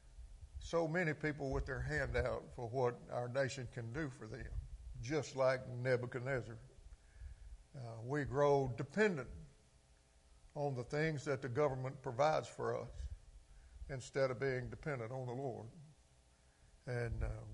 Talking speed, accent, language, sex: 135 wpm, American, English, male